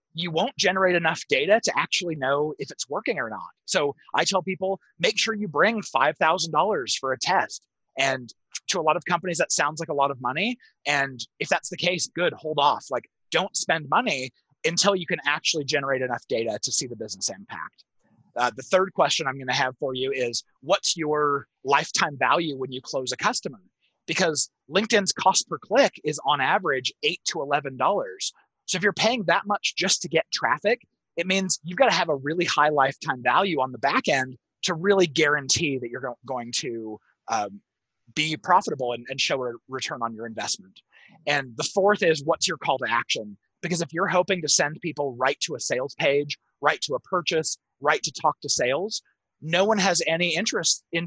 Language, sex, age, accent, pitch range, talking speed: English, male, 30-49, American, 135-185 Hz, 200 wpm